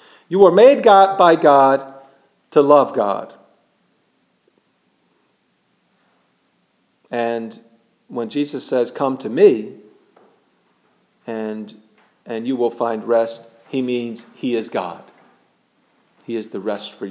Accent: American